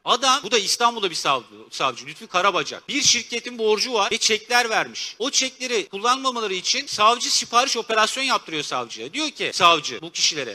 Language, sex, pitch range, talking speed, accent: Turkish, male, 210-270 Hz, 170 wpm, native